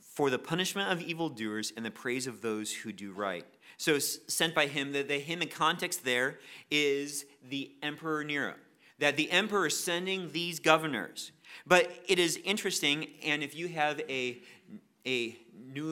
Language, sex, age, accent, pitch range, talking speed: English, male, 30-49, American, 145-200 Hz, 170 wpm